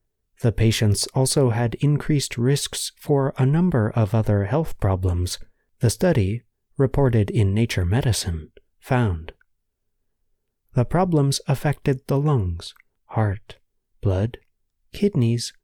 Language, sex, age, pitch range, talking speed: English, male, 30-49, 105-140 Hz, 105 wpm